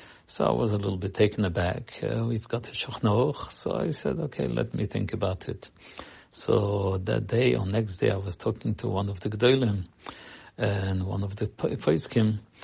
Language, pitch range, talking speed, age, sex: English, 100-120 Hz, 195 wpm, 50-69, male